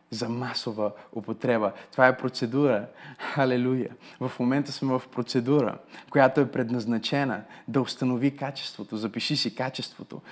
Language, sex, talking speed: Bulgarian, male, 120 wpm